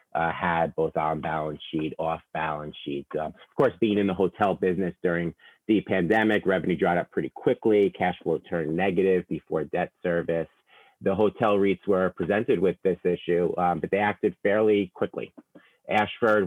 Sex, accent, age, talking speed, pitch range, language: male, American, 30-49, 170 wpm, 85-100 Hz, English